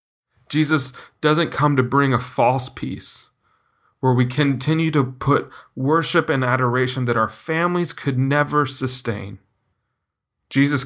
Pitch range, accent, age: 115-145 Hz, American, 30-49